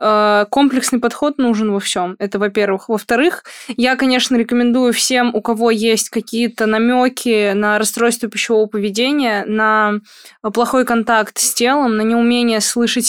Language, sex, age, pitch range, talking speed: Russian, female, 20-39, 210-240 Hz, 135 wpm